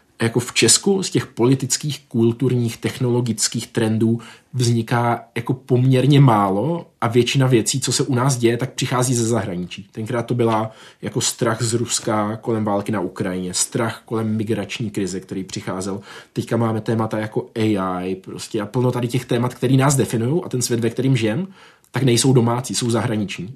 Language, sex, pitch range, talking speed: Czech, male, 110-125 Hz, 170 wpm